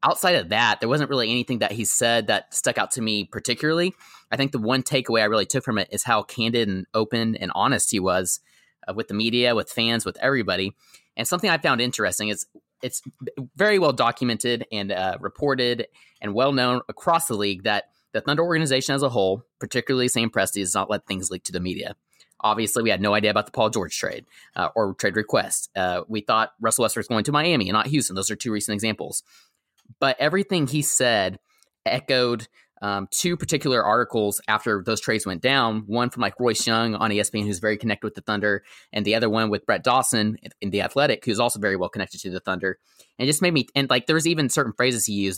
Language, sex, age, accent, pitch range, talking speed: English, male, 30-49, American, 105-130 Hz, 220 wpm